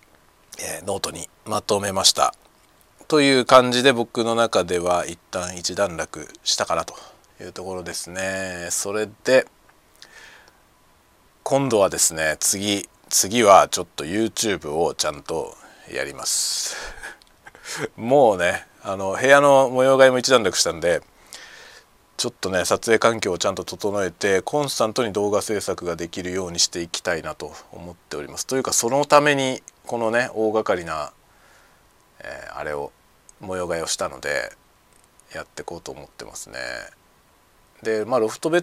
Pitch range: 90-130 Hz